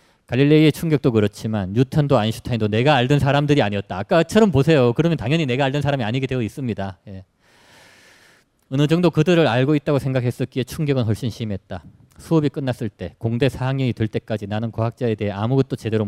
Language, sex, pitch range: Korean, male, 105-140 Hz